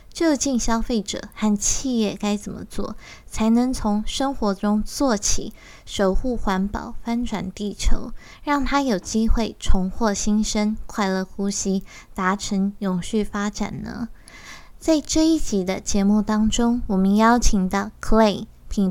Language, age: Chinese, 20-39